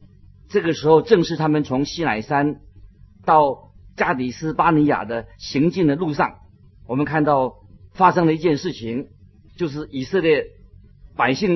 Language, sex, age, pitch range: Chinese, male, 50-69, 100-155 Hz